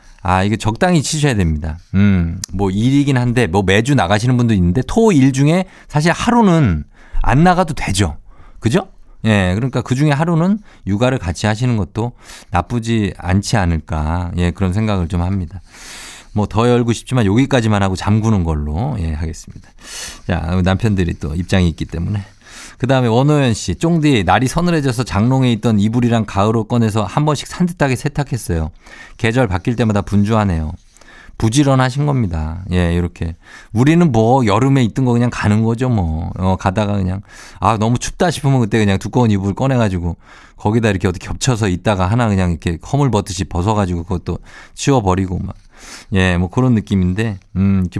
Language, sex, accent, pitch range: Korean, male, native, 90-130 Hz